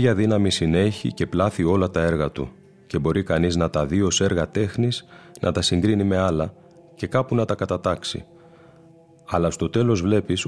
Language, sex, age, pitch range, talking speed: Greek, male, 30-49, 85-115 Hz, 185 wpm